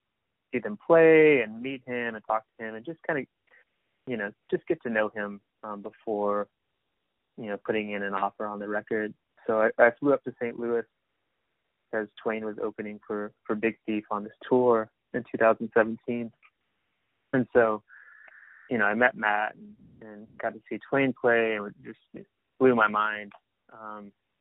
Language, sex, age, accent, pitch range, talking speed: English, male, 20-39, American, 105-115 Hz, 185 wpm